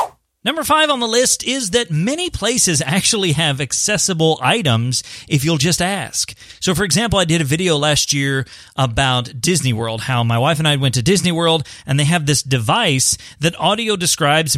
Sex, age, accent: male, 30-49, American